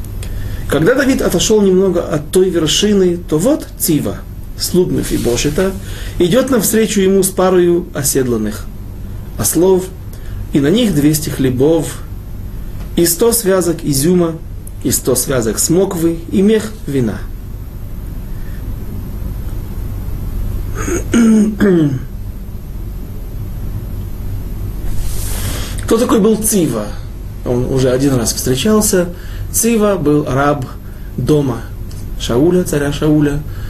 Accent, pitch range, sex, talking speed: native, 100-160 Hz, male, 95 wpm